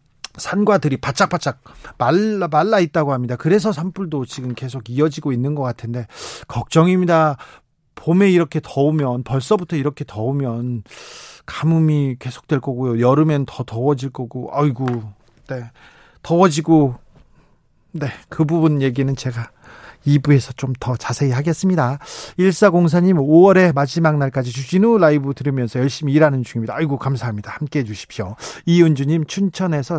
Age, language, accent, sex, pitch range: 40-59, Korean, native, male, 130-170 Hz